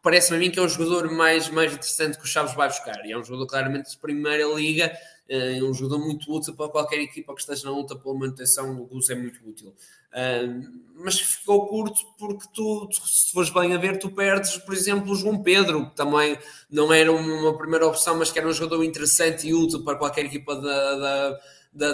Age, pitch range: 20-39, 135-160 Hz